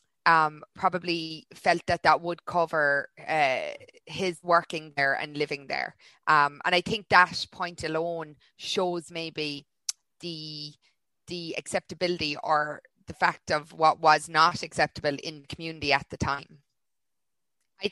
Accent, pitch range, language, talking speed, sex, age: Irish, 150-180 Hz, English, 135 wpm, female, 20-39